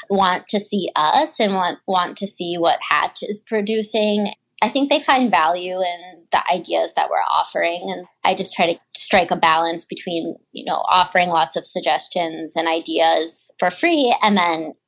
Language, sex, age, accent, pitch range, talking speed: English, female, 20-39, American, 175-210 Hz, 180 wpm